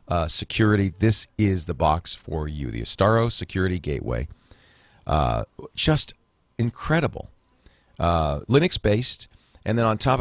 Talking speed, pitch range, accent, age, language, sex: 125 wpm, 90-115 Hz, American, 40-59, English, male